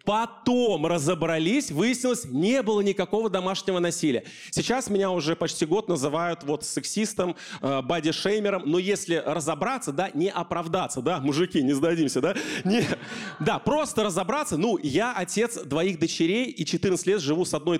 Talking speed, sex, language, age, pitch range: 145 wpm, male, Russian, 30-49, 175-240 Hz